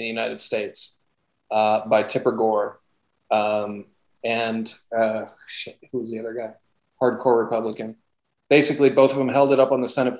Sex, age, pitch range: male, 40-59, 115-130 Hz